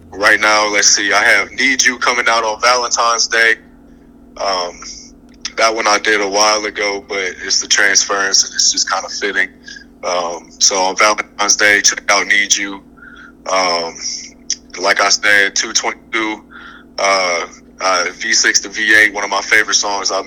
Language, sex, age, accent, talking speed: English, male, 20-39, American, 165 wpm